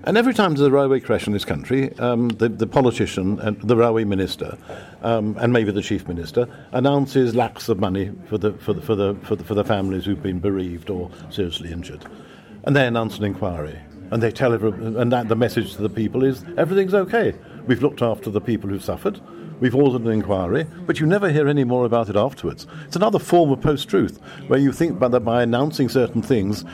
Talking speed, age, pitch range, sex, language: 220 wpm, 60-79, 105-140 Hz, male, English